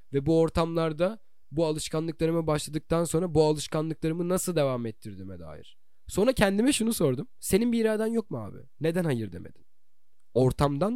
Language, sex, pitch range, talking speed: Turkish, male, 125-170 Hz, 150 wpm